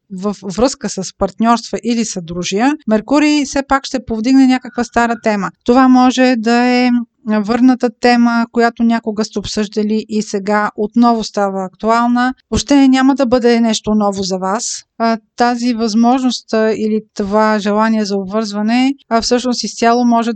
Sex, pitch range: female, 205-245 Hz